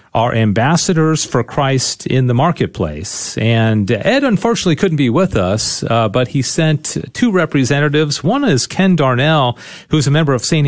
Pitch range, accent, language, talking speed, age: 110-155 Hz, American, English, 165 wpm, 40-59